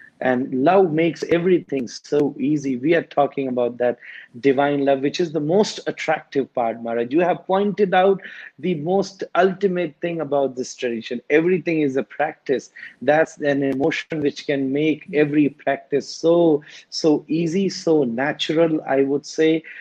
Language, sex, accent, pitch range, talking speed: English, male, Indian, 140-170 Hz, 155 wpm